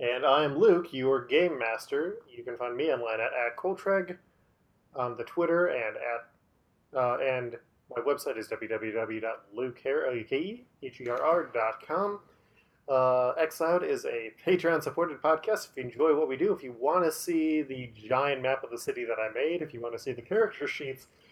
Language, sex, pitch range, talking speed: English, male, 120-175 Hz, 170 wpm